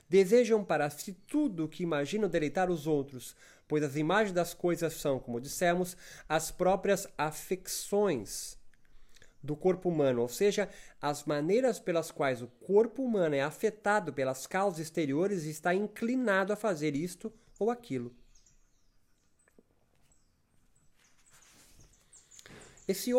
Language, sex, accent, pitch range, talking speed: Portuguese, male, Brazilian, 140-200 Hz, 120 wpm